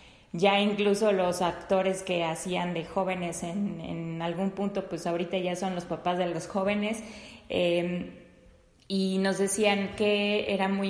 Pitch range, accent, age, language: 175-200 Hz, Mexican, 20-39, Spanish